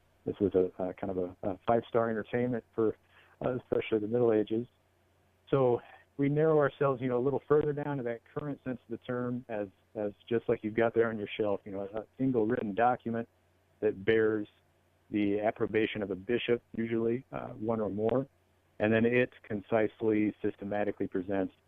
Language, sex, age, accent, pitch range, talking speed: English, male, 50-69, American, 95-120 Hz, 185 wpm